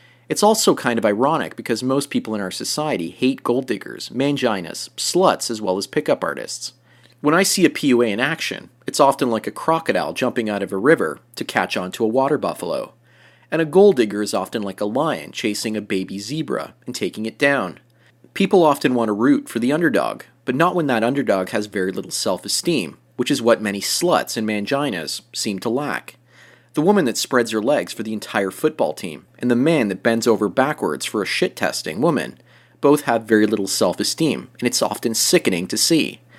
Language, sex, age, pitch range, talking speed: English, male, 30-49, 100-140 Hz, 200 wpm